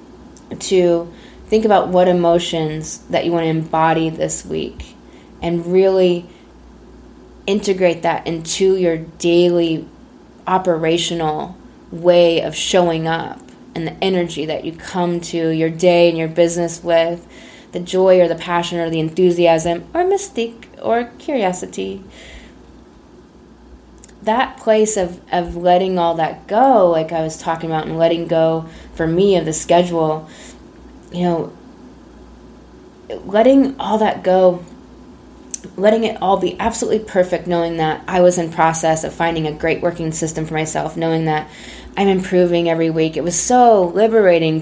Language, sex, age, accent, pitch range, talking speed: English, female, 20-39, American, 160-185 Hz, 145 wpm